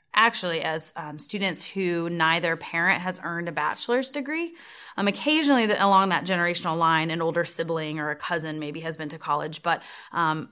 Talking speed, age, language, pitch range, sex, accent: 185 wpm, 20-39, English, 160-205 Hz, female, American